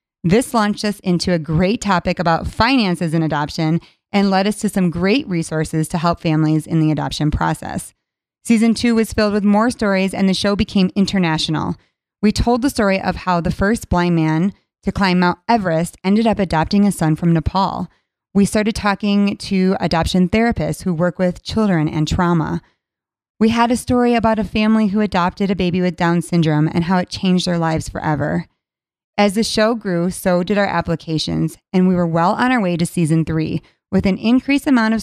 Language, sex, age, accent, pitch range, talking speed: English, female, 30-49, American, 170-215 Hz, 195 wpm